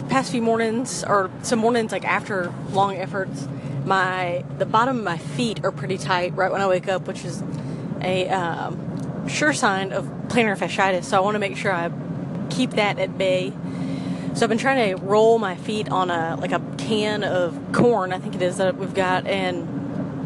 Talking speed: 200 wpm